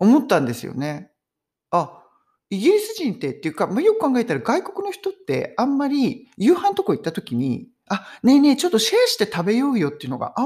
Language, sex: Japanese, male